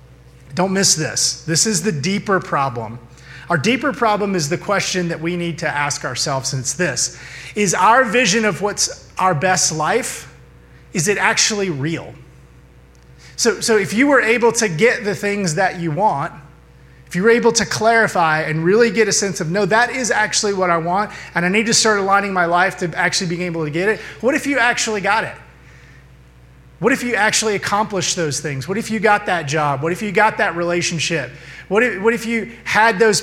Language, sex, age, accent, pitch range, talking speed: English, male, 30-49, American, 135-200 Hz, 205 wpm